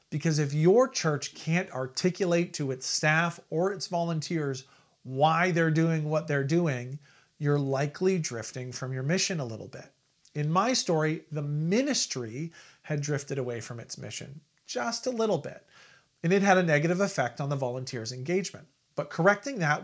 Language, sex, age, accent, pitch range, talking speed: English, male, 40-59, American, 140-180 Hz, 165 wpm